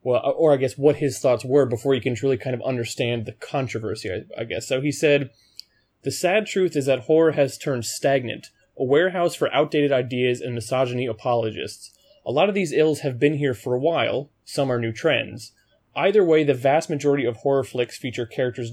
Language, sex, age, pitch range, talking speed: English, male, 20-39, 120-150 Hz, 205 wpm